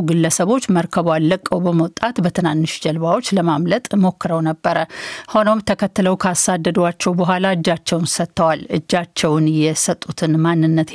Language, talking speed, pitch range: Amharic, 105 wpm, 165-205 Hz